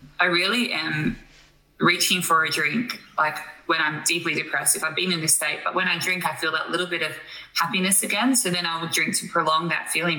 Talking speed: 230 wpm